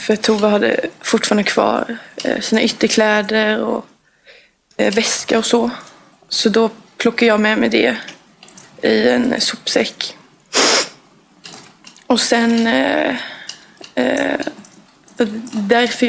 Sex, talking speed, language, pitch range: female, 90 wpm, Swedish, 220-245 Hz